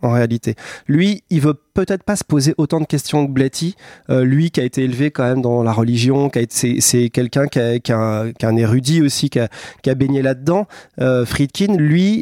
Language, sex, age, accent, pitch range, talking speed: French, male, 30-49, French, 125-155 Hz, 220 wpm